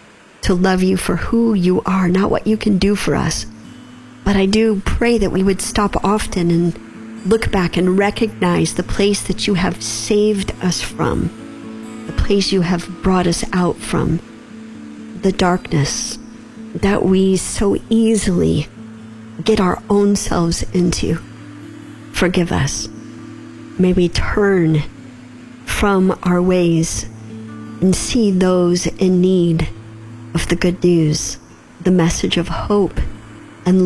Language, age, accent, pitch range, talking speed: English, 50-69, American, 130-200 Hz, 135 wpm